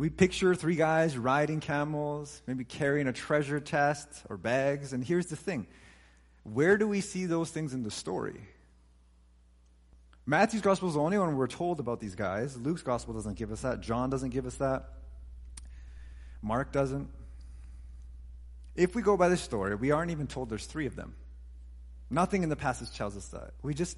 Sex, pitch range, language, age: male, 100-150 Hz, English, 30-49